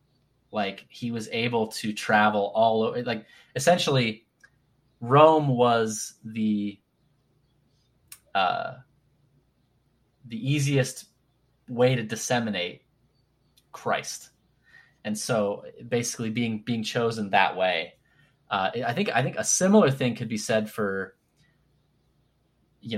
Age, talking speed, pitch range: 20-39, 105 wpm, 105-130 Hz